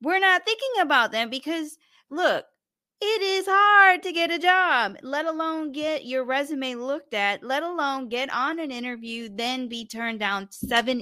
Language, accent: English, American